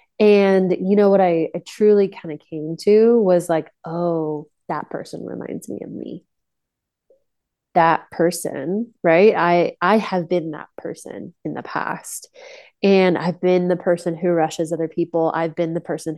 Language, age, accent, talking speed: English, 20-39, American, 165 wpm